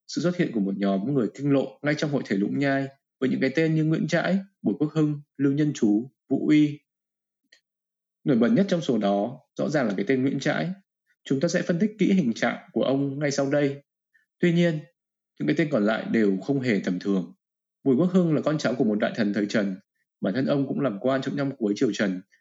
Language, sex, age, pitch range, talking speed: Vietnamese, male, 20-39, 125-160 Hz, 245 wpm